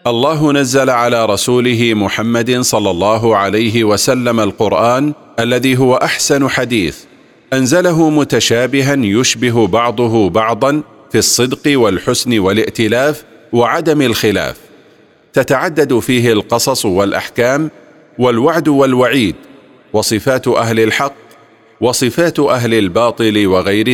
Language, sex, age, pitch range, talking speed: Arabic, male, 40-59, 110-135 Hz, 95 wpm